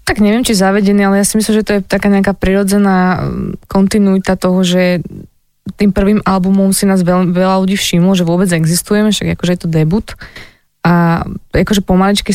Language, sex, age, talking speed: Slovak, female, 20-39, 180 wpm